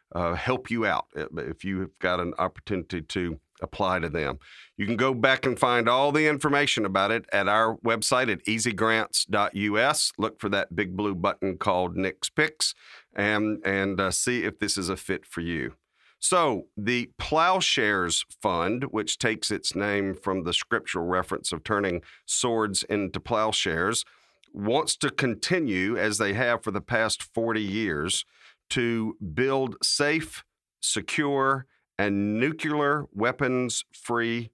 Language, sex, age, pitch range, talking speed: English, male, 40-59, 100-120 Hz, 145 wpm